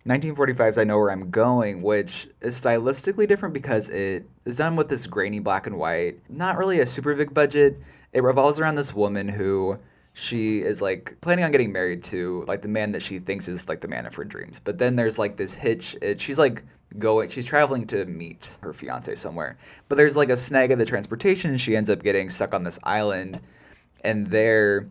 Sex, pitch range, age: male, 100-140 Hz, 20-39